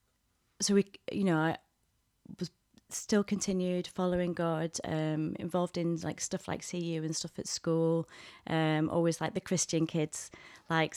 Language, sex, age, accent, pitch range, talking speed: English, female, 20-39, British, 150-175 Hz, 155 wpm